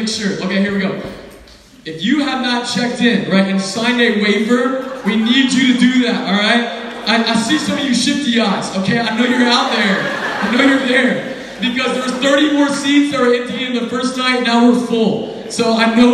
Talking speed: 225 wpm